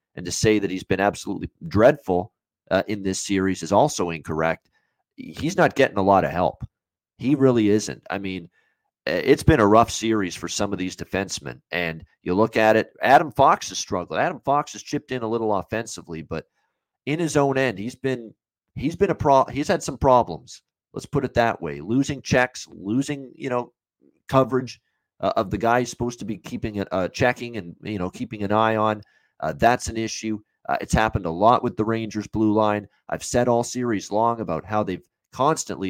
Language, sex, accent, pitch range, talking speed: English, male, American, 95-120 Hz, 200 wpm